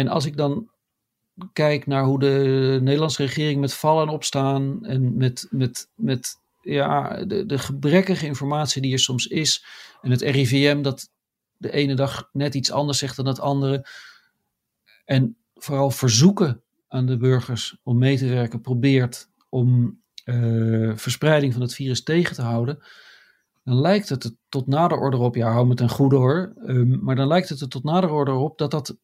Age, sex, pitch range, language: 50-69, male, 130-160 Hz, Dutch